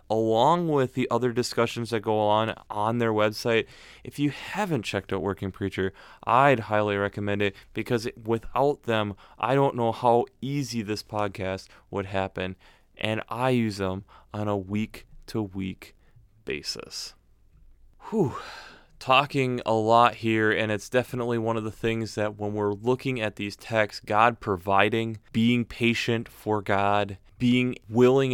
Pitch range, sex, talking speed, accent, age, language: 105-120 Hz, male, 145 wpm, American, 20-39, English